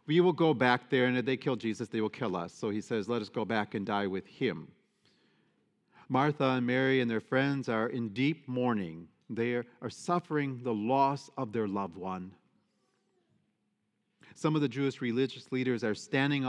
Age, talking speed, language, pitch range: 40-59, 190 wpm, English, 105-130 Hz